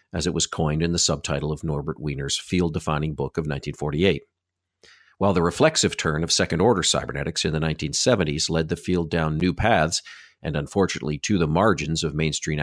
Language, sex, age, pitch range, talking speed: English, male, 50-69, 80-105 Hz, 175 wpm